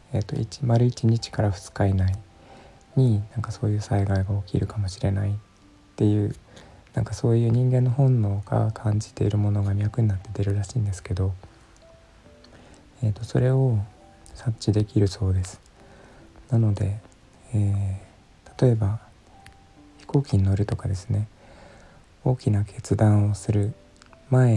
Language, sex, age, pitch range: Japanese, male, 20-39, 100-115 Hz